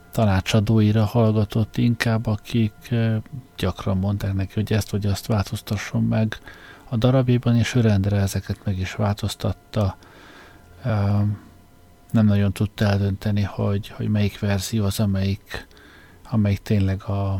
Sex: male